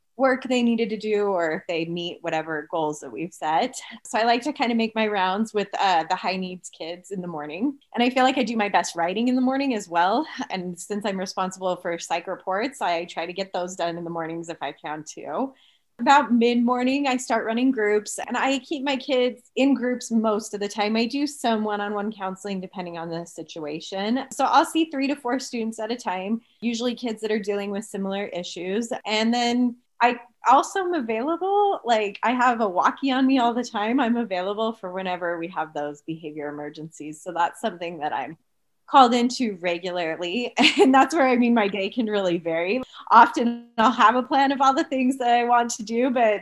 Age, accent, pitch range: 20-39, American, 180-245 Hz